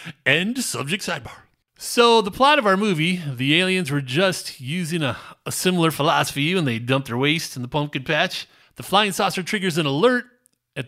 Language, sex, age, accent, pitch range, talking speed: English, male, 30-49, American, 145-220 Hz, 190 wpm